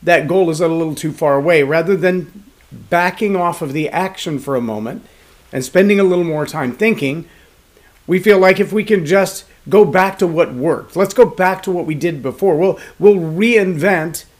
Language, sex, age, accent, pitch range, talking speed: English, male, 40-59, American, 150-195 Hz, 200 wpm